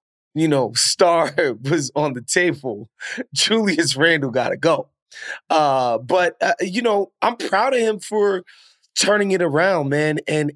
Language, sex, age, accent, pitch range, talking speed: English, male, 20-39, American, 140-175 Hz, 155 wpm